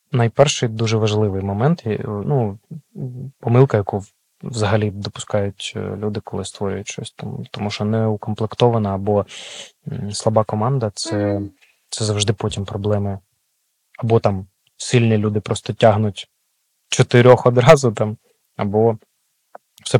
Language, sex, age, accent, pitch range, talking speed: Ukrainian, male, 20-39, native, 105-130 Hz, 110 wpm